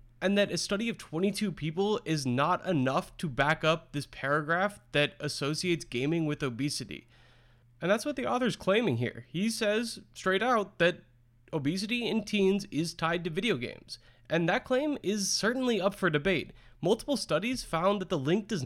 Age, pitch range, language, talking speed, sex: 20-39, 145-210 Hz, English, 175 wpm, male